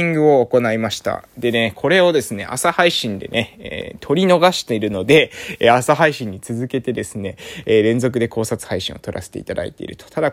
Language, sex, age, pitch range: Japanese, male, 20-39, 105-135 Hz